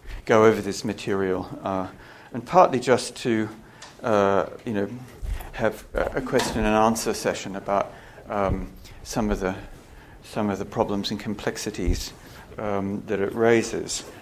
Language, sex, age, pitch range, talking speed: English, male, 60-79, 100-110 Hz, 140 wpm